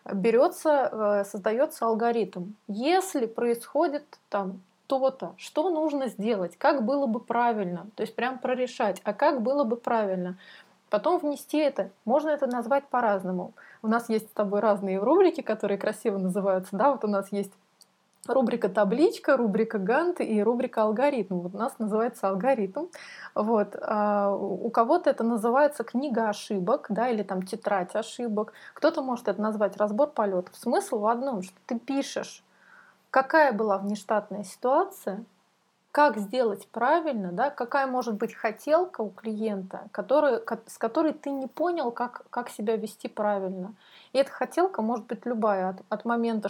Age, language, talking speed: 20-39, Russian, 150 wpm